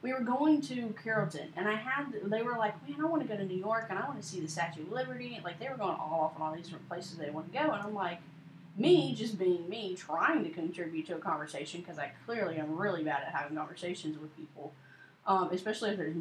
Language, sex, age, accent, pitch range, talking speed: English, female, 20-39, American, 170-240 Hz, 265 wpm